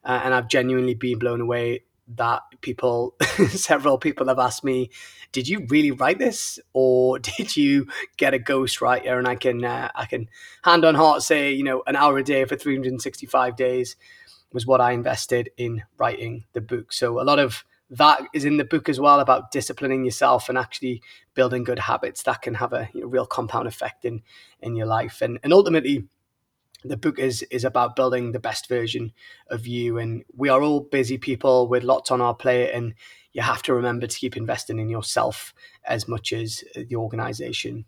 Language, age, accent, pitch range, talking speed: English, 20-39, British, 120-140 Hz, 195 wpm